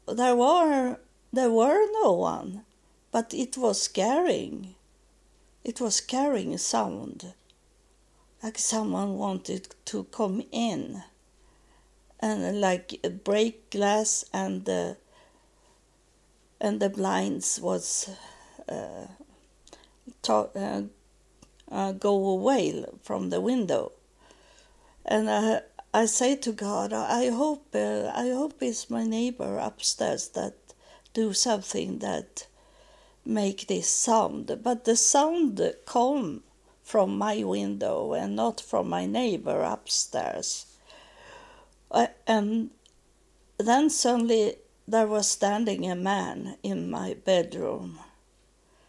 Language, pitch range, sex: English, 200-255 Hz, female